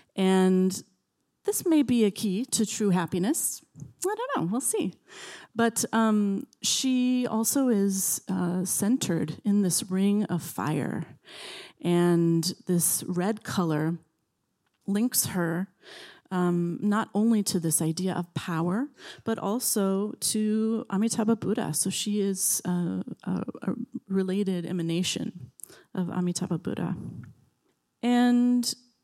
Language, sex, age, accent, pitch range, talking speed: English, female, 30-49, American, 175-230 Hz, 120 wpm